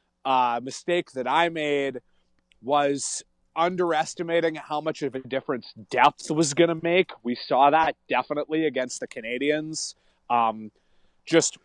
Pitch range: 120-170 Hz